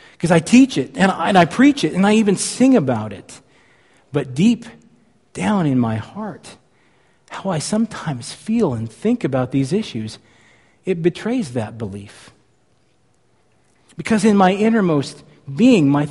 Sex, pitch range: male, 145-200 Hz